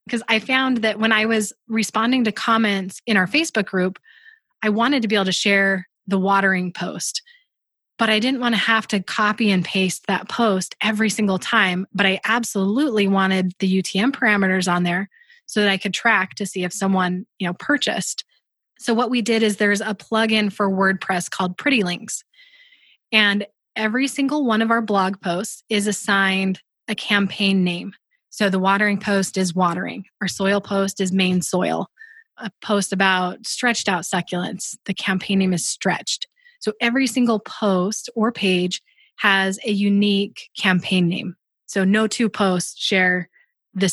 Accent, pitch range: American, 190-230 Hz